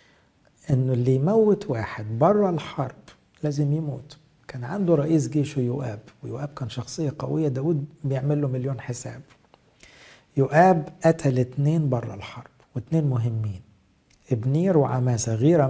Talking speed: 120 wpm